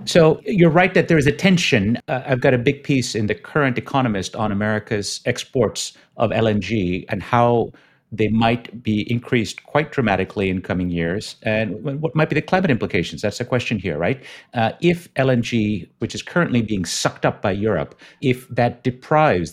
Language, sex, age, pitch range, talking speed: English, male, 50-69, 90-120 Hz, 185 wpm